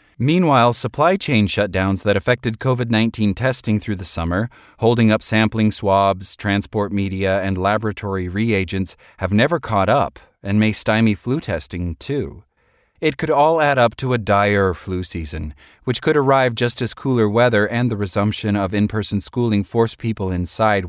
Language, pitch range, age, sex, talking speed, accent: English, 95-115 Hz, 30-49, male, 160 wpm, American